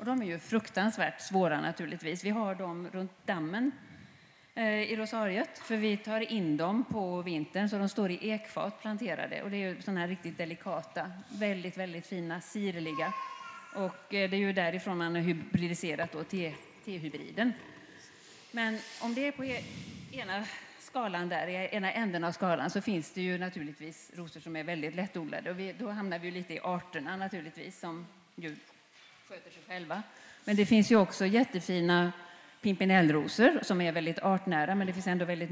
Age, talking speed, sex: 30-49, 170 wpm, female